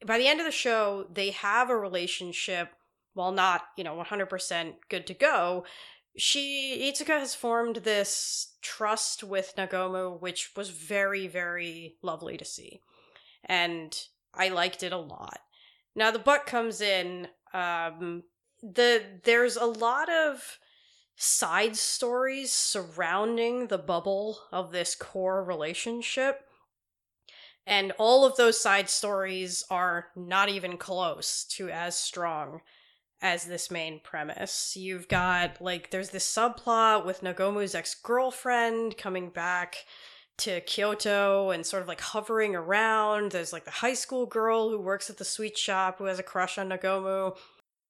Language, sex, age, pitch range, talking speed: English, female, 30-49, 180-230 Hz, 140 wpm